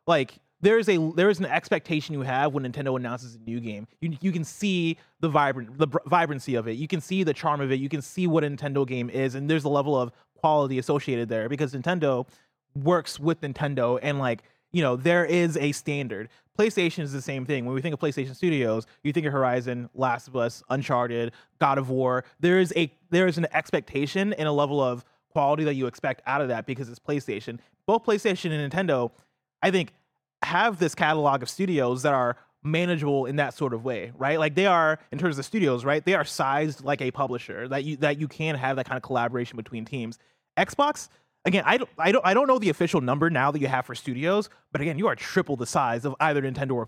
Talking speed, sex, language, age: 230 wpm, male, English, 30-49